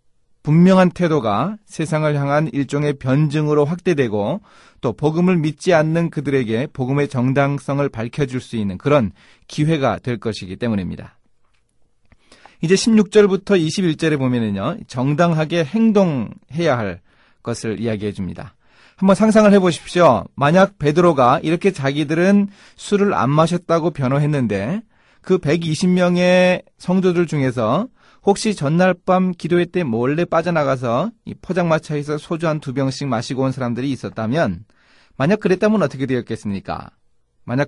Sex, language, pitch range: male, Korean, 130-180 Hz